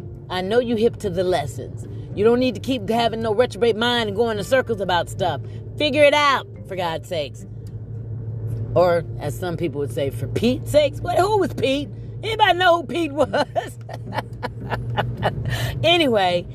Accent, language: American, English